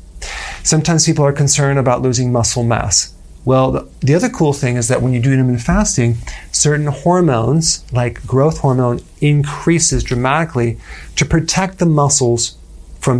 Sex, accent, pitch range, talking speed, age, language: male, American, 115-140 Hz, 145 wpm, 40-59, English